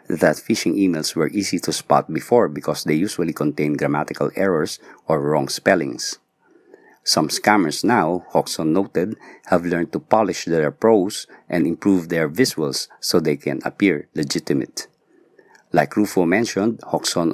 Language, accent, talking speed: English, Filipino, 140 wpm